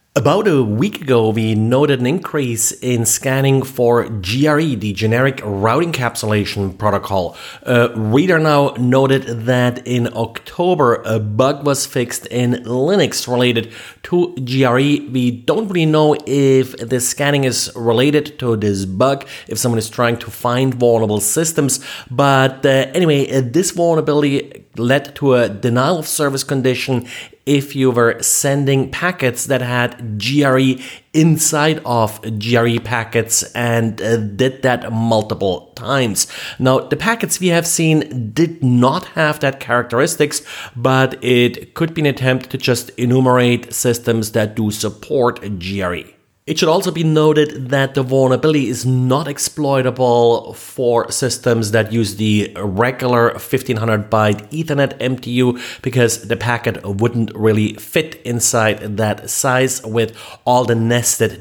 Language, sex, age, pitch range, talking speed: English, male, 30-49, 115-135 Hz, 140 wpm